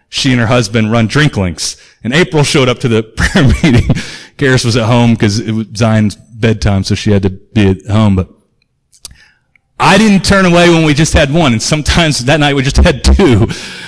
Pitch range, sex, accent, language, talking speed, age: 110-155 Hz, male, American, English, 210 wpm, 30-49